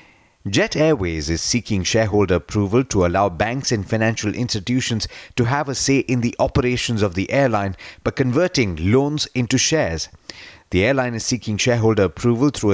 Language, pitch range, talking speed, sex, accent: English, 95-130 Hz, 160 wpm, male, Indian